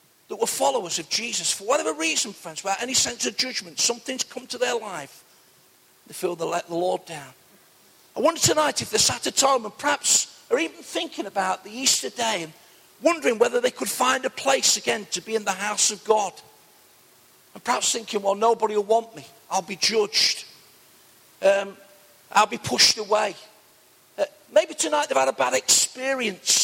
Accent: British